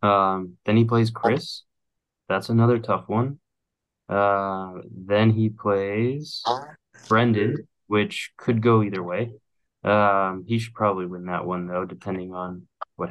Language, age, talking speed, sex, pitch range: English, 20-39, 135 wpm, male, 95-110 Hz